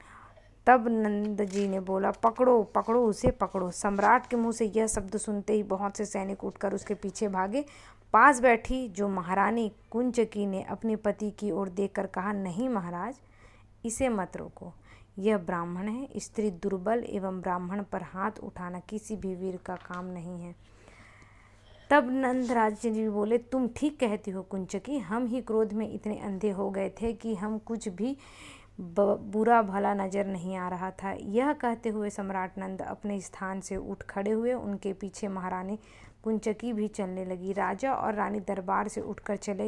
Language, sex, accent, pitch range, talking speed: Hindi, female, native, 195-230 Hz, 170 wpm